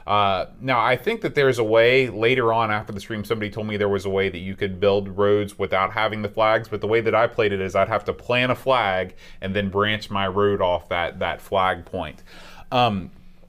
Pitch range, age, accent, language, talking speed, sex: 95-110 Hz, 30-49, American, English, 240 wpm, male